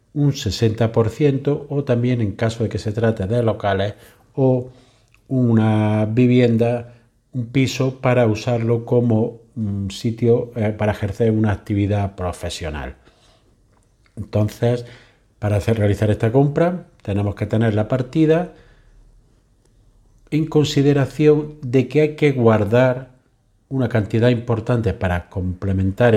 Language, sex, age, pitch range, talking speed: Spanish, male, 50-69, 105-130 Hz, 115 wpm